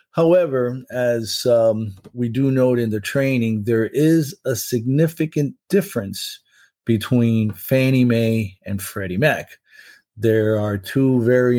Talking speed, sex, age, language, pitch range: 125 wpm, male, 50-69, English, 105-130 Hz